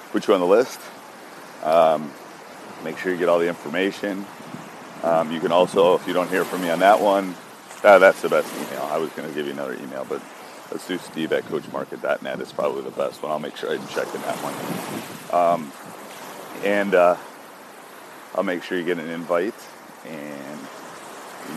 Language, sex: English, male